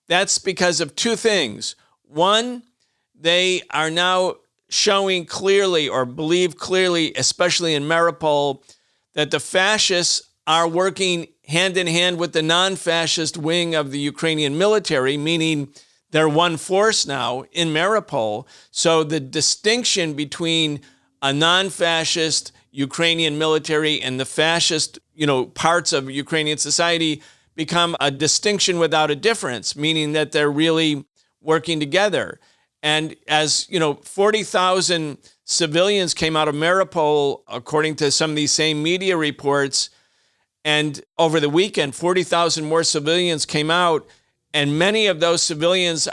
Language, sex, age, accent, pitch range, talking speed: English, male, 50-69, American, 150-180 Hz, 125 wpm